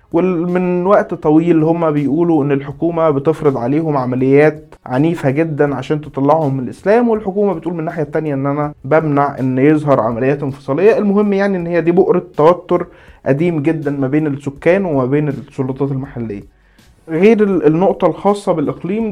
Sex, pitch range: male, 140-175 Hz